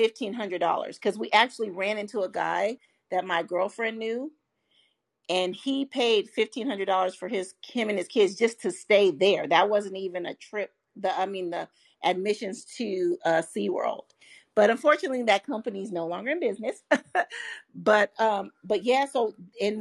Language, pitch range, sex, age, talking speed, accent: English, 185-225 Hz, female, 40-59, 160 wpm, American